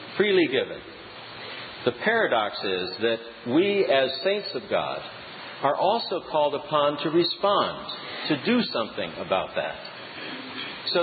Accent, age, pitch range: American, 50-69, 130-185 Hz